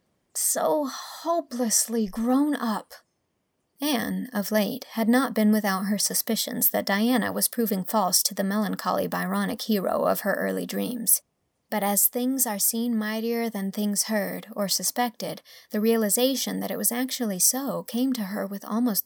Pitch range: 210-255 Hz